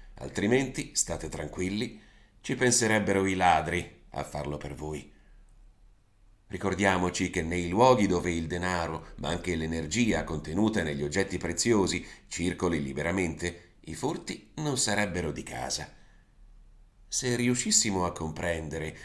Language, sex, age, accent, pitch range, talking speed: Italian, male, 40-59, native, 80-100 Hz, 115 wpm